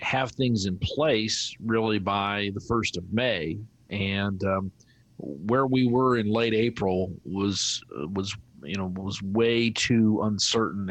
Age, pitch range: 40-59, 100-120 Hz